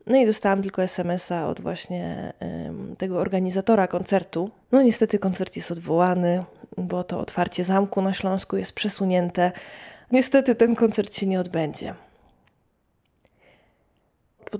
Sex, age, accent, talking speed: female, 20-39, native, 125 wpm